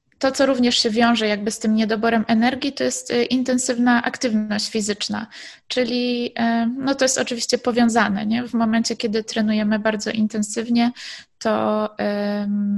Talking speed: 140 wpm